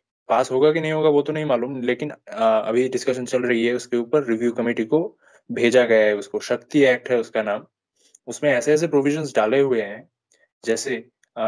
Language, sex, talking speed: Hindi, male, 200 wpm